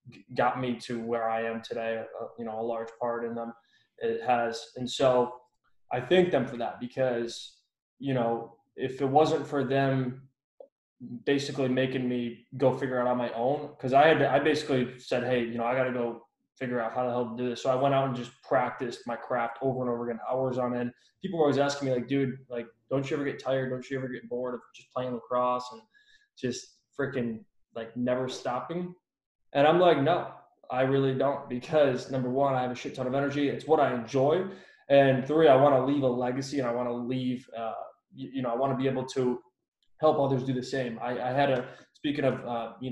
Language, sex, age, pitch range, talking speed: English, male, 20-39, 120-135 Hz, 225 wpm